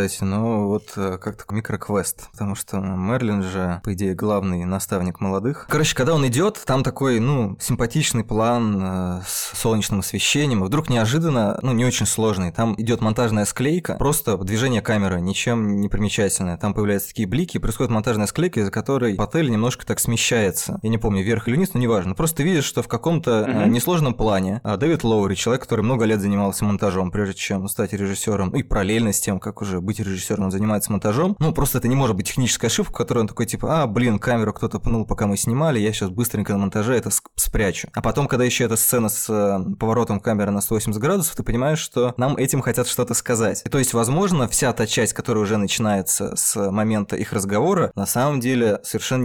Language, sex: Russian, male